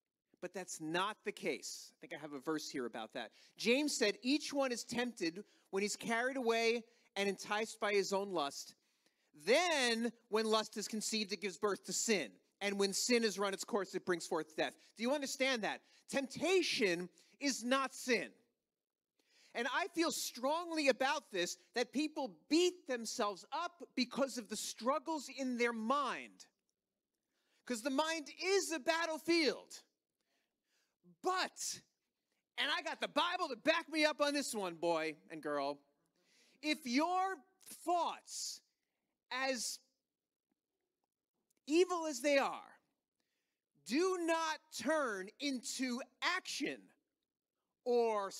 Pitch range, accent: 205-305 Hz, American